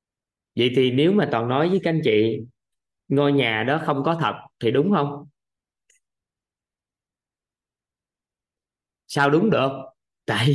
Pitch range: 130-155 Hz